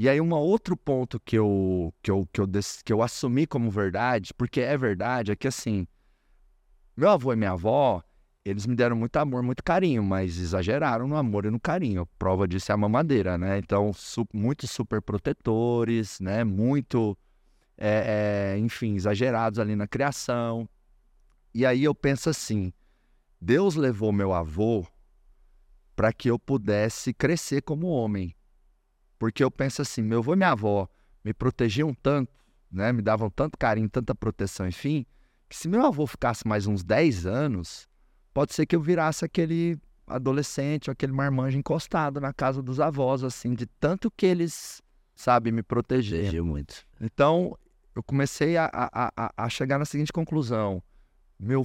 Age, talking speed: 30-49, 160 wpm